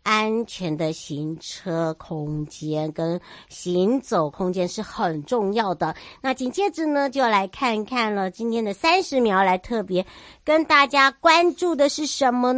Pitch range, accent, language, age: 175-245 Hz, American, Chinese, 50-69